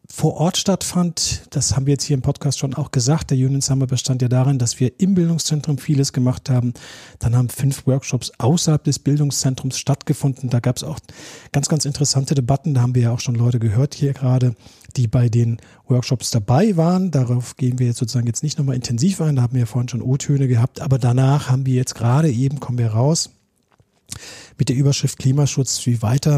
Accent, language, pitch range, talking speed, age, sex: German, German, 120-145 Hz, 210 wpm, 40-59, male